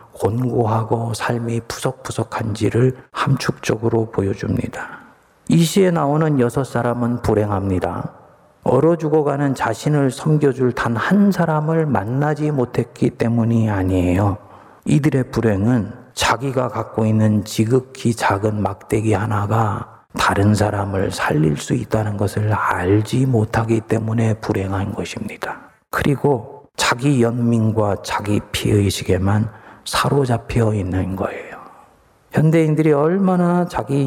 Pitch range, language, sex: 105-135 Hz, Korean, male